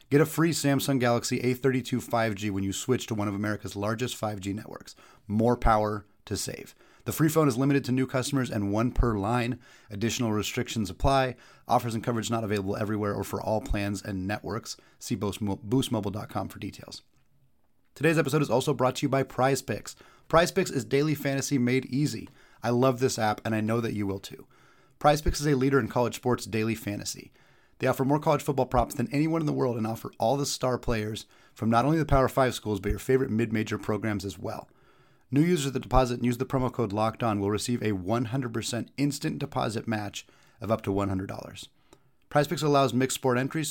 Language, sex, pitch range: English, male, 110-135 Hz